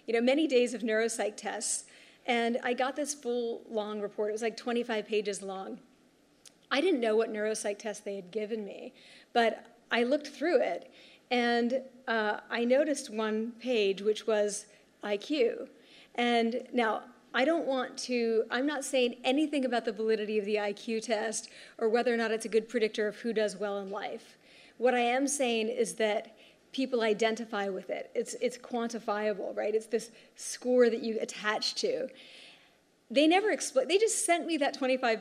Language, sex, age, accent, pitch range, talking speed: English, female, 40-59, American, 220-255 Hz, 180 wpm